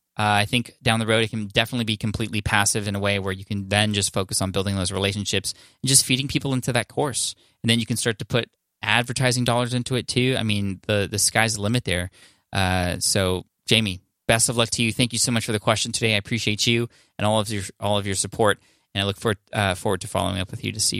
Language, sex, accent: English, male, American